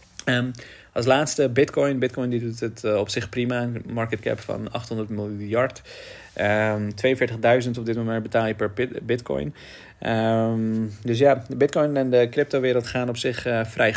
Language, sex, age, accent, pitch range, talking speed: Dutch, male, 40-59, Dutch, 110-125 Hz, 175 wpm